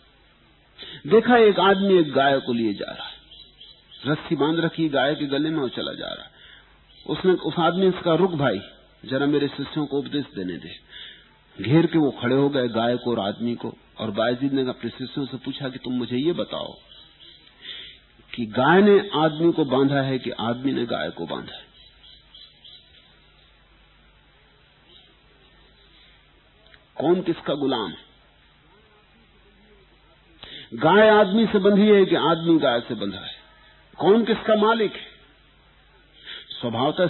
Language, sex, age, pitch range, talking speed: English, male, 50-69, 120-170 Hz, 145 wpm